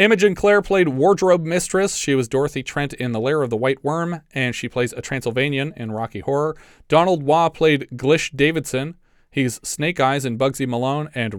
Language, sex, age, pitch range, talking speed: English, male, 30-49, 125-160 Hz, 190 wpm